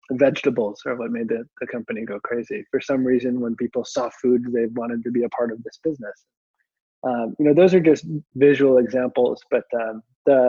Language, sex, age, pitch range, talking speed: English, male, 20-39, 115-140 Hz, 205 wpm